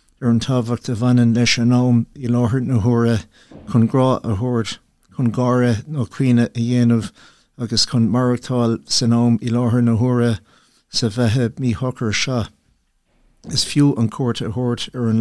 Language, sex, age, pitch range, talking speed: English, male, 60-79, 115-125 Hz, 120 wpm